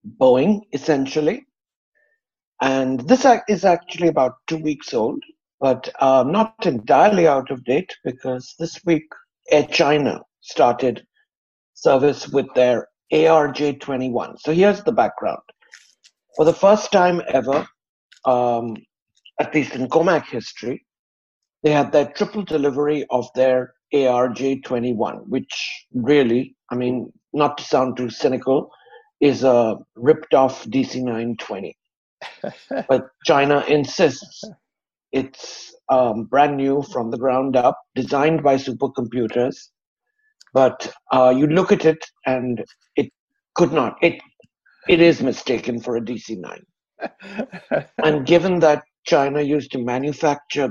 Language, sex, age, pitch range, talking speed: English, male, 60-79, 125-165 Hz, 120 wpm